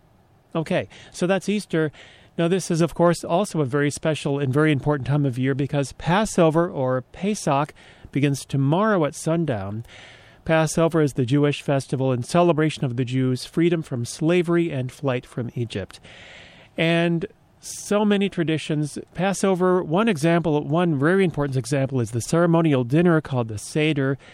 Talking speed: 155 wpm